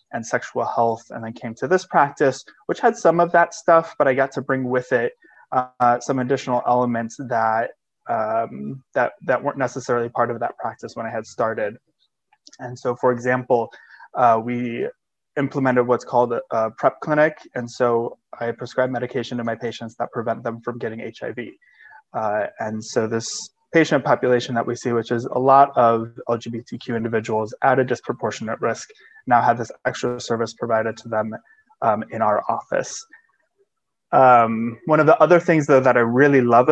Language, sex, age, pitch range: English, male, 20-39, 115-140 Hz